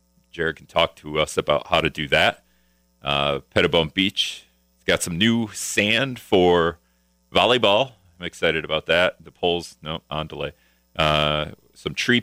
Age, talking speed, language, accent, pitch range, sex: 40-59, 150 wpm, English, American, 70-105 Hz, male